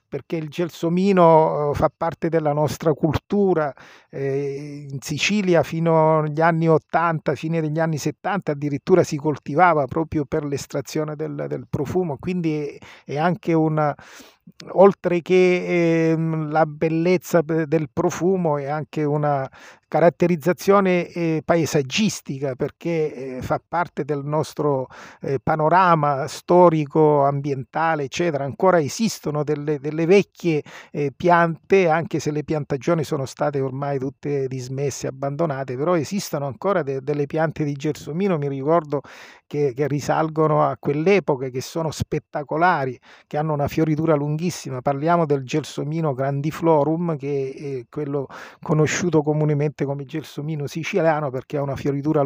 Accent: native